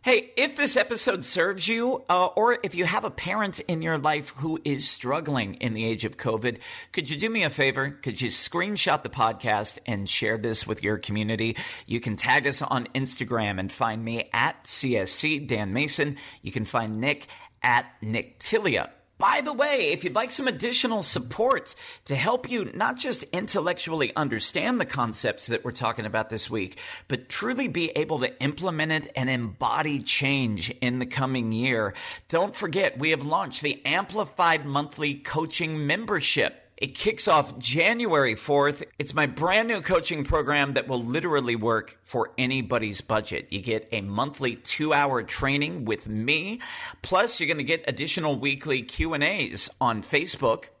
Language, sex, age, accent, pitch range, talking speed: English, male, 40-59, American, 115-165 Hz, 170 wpm